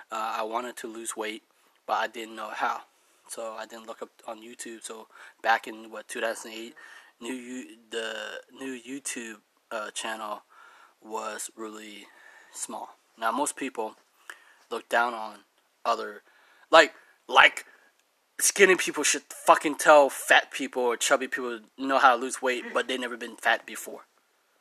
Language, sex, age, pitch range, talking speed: English, male, 20-39, 115-140 Hz, 155 wpm